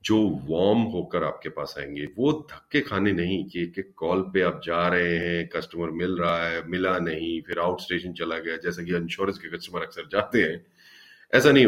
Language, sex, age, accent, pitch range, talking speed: Hindi, male, 40-59, native, 85-110 Hz, 195 wpm